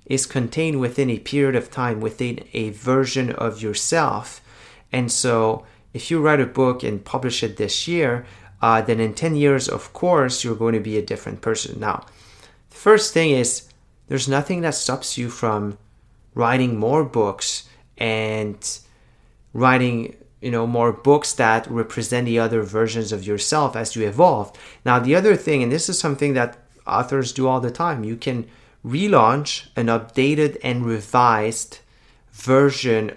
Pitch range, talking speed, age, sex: 110-135 Hz, 165 wpm, 30-49, male